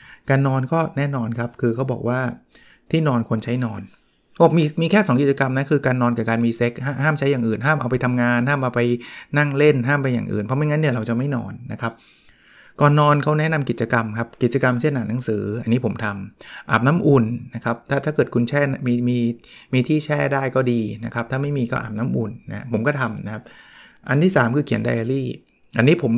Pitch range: 115-145 Hz